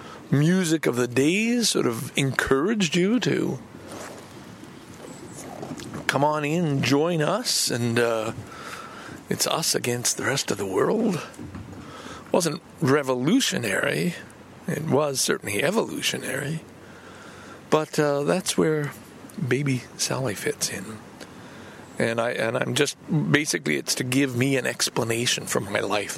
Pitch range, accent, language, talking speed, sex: 120-170 Hz, American, English, 125 wpm, male